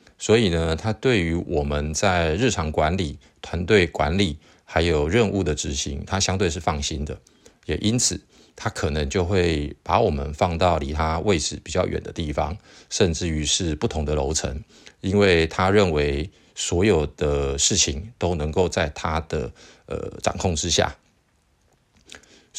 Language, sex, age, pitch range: Chinese, male, 50-69, 75-95 Hz